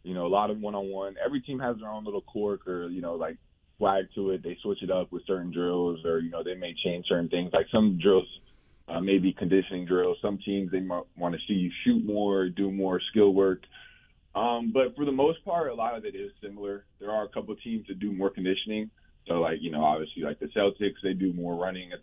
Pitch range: 85-100 Hz